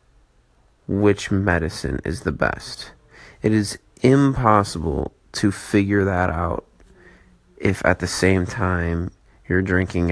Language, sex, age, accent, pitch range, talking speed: English, male, 30-49, American, 90-105 Hz, 115 wpm